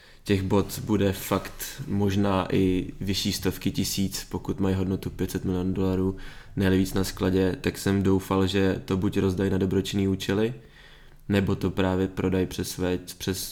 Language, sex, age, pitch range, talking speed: Czech, male, 20-39, 90-95 Hz, 150 wpm